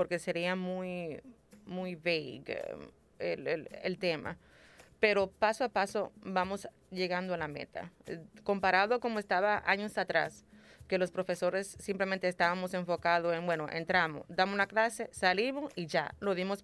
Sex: female